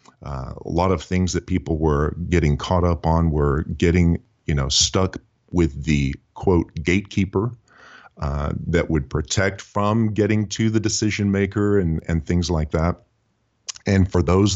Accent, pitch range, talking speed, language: American, 80-100 Hz, 160 wpm, English